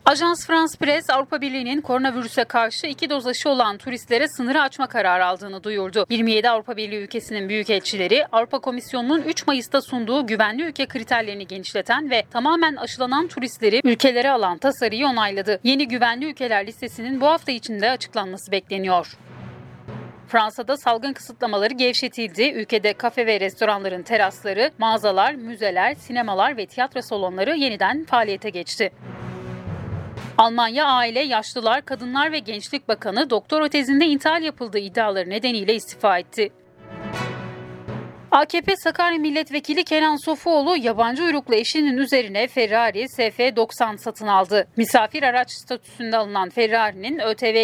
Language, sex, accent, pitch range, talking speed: Turkish, female, native, 210-270 Hz, 125 wpm